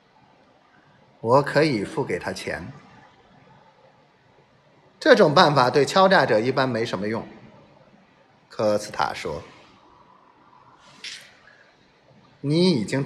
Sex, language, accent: male, Chinese, native